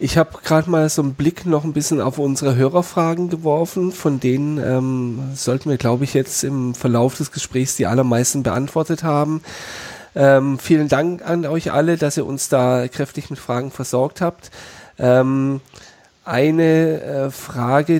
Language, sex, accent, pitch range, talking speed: German, male, German, 120-145 Hz, 165 wpm